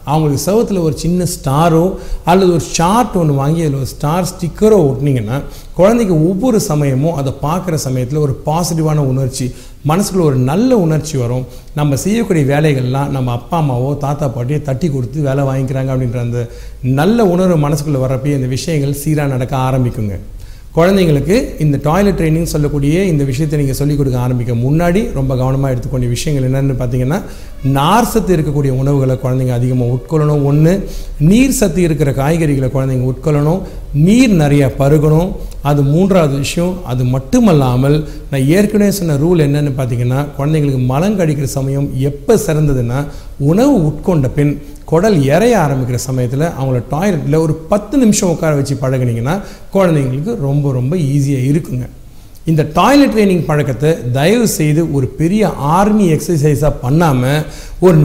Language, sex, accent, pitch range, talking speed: Tamil, male, native, 135-170 Hz, 140 wpm